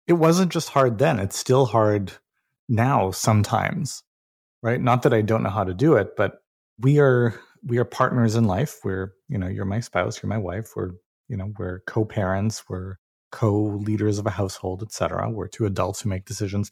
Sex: male